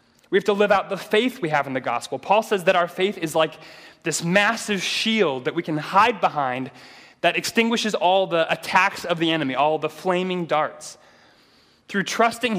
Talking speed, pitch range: 195 wpm, 155-195 Hz